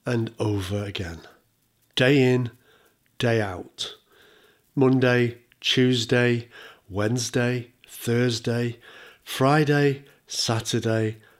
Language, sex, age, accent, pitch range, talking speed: English, male, 50-69, British, 110-130 Hz, 70 wpm